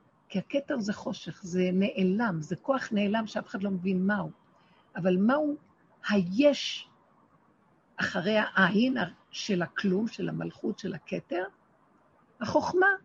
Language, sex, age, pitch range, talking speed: Hebrew, female, 50-69, 190-265 Hz, 120 wpm